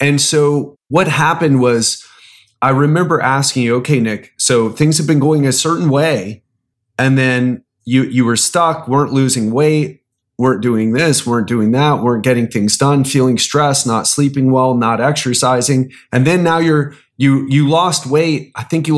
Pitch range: 120-140 Hz